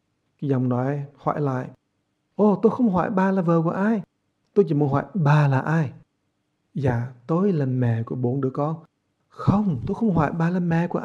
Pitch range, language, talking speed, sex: 125-175 Hz, English, 295 wpm, male